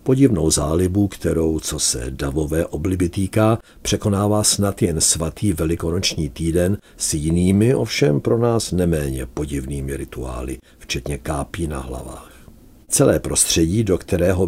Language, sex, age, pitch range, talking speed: Czech, male, 60-79, 75-105 Hz, 125 wpm